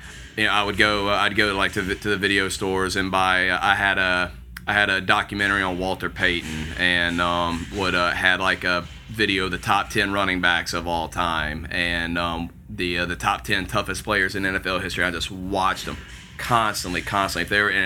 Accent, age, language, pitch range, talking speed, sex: American, 30-49, English, 90-100 Hz, 215 wpm, male